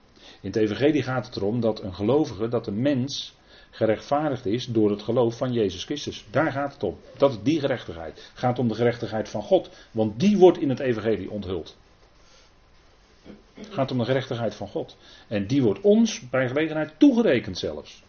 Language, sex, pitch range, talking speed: Dutch, male, 110-145 Hz, 190 wpm